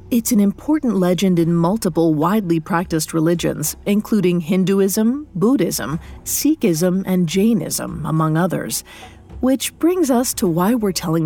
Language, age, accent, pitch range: English, 40-59, American, 165-220 Hz